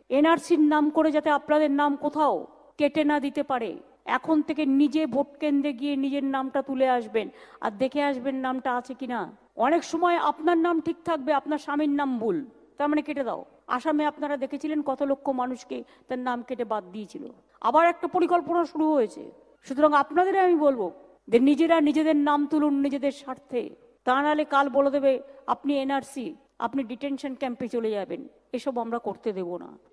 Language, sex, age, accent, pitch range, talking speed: Bengali, female, 50-69, native, 185-295 Hz, 170 wpm